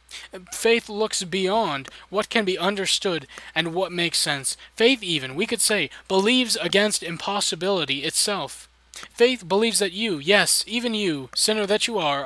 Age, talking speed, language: 20-39, 150 wpm, English